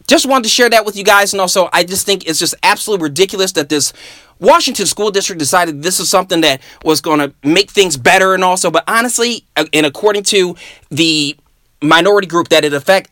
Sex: male